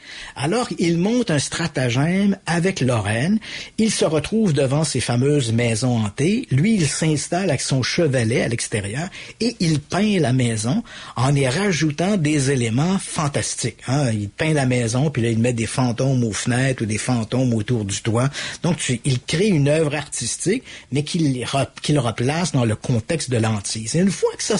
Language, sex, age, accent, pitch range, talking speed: French, male, 50-69, Canadian, 120-170 Hz, 180 wpm